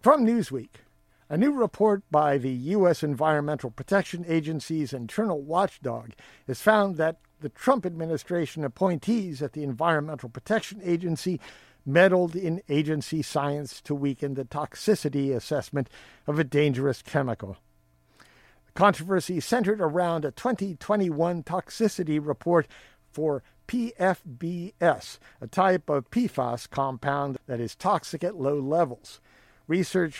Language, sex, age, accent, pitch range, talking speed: English, male, 50-69, American, 140-180 Hz, 120 wpm